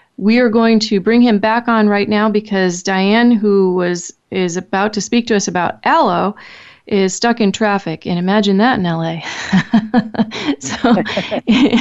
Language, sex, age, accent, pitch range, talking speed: English, female, 30-49, American, 185-230 Hz, 165 wpm